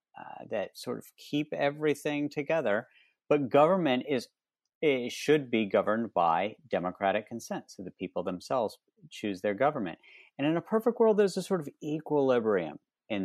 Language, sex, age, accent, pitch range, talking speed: English, male, 50-69, American, 100-155 Hz, 160 wpm